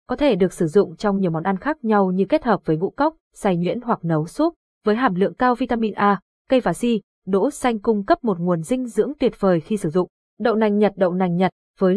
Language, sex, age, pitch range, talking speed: Vietnamese, female, 20-39, 185-225 Hz, 255 wpm